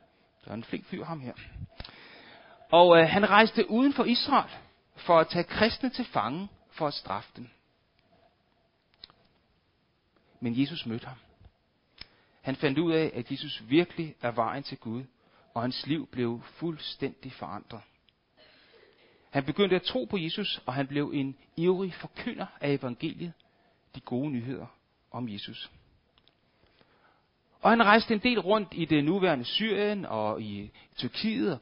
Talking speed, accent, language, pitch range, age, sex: 145 wpm, native, Danish, 135-205 Hz, 60-79, male